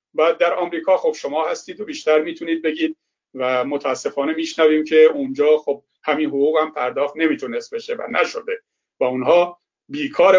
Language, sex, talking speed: Persian, male, 155 wpm